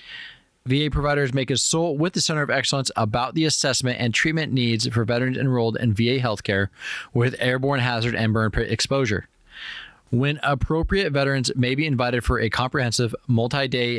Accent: American